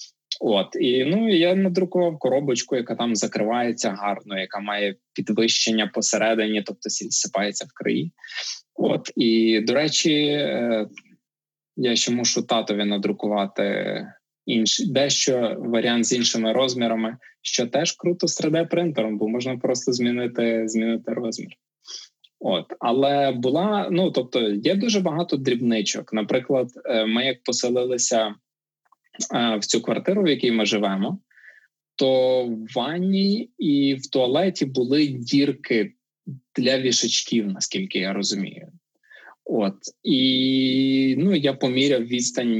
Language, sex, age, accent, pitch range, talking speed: Ukrainian, male, 20-39, native, 110-145 Hz, 115 wpm